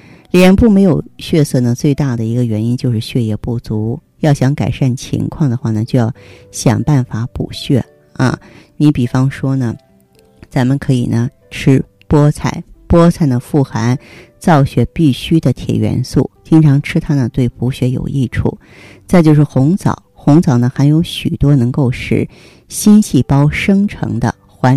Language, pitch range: Chinese, 120-150 Hz